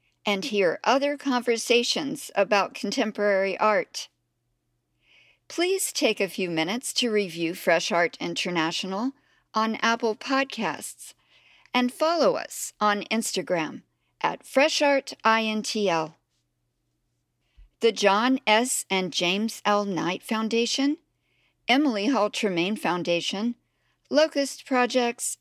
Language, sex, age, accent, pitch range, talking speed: English, female, 50-69, American, 175-250 Hz, 95 wpm